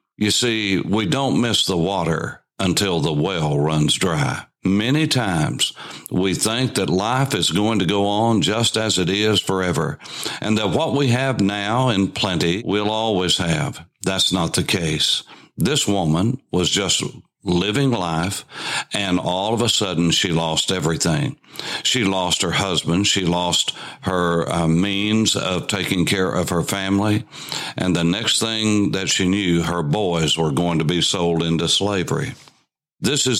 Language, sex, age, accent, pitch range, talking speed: English, male, 60-79, American, 90-115 Hz, 160 wpm